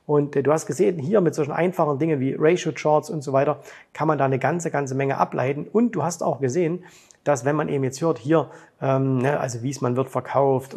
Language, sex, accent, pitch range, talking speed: German, male, German, 130-155 Hz, 230 wpm